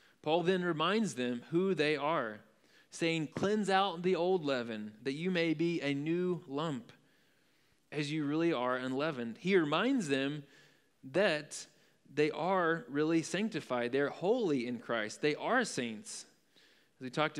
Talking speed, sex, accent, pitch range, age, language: 150 wpm, male, American, 130-170 Hz, 20-39, English